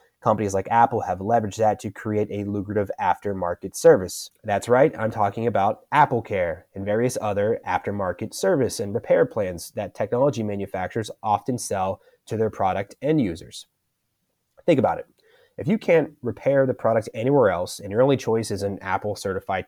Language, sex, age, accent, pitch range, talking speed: English, male, 30-49, American, 100-125 Hz, 165 wpm